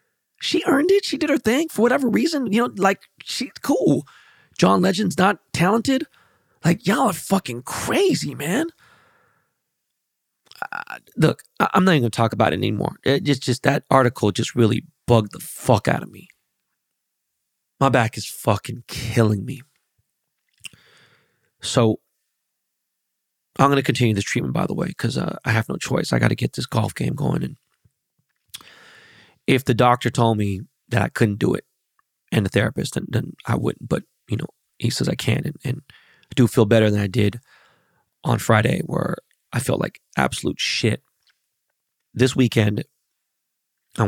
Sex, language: male, English